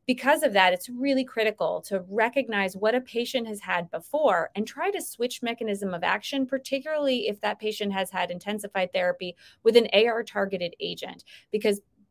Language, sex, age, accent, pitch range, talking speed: English, female, 30-49, American, 195-240 Hz, 170 wpm